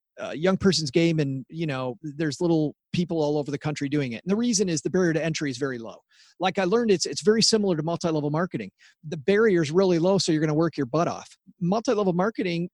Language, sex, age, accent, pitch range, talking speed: English, male, 40-59, American, 150-195 Hz, 245 wpm